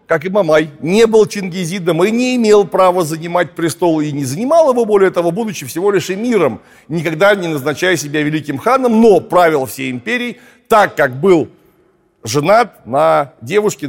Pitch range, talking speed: 150-210 Hz, 165 wpm